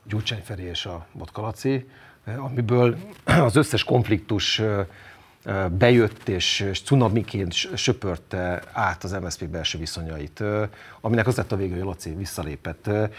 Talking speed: 110 wpm